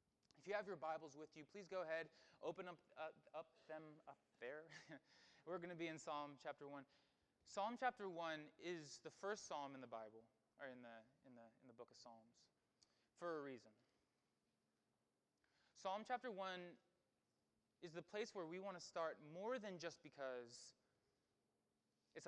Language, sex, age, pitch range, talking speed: English, male, 20-39, 125-185 Hz, 170 wpm